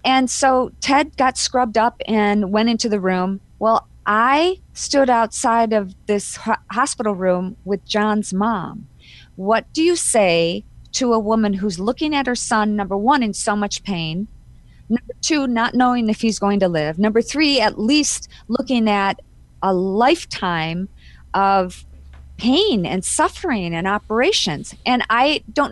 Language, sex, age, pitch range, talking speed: English, female, 40-59, 205-265 Hz, 155 wpm